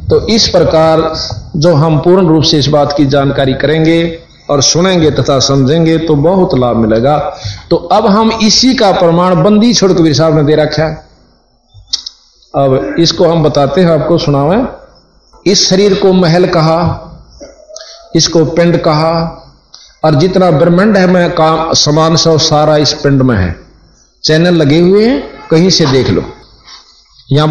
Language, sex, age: Hindi, male, 50-69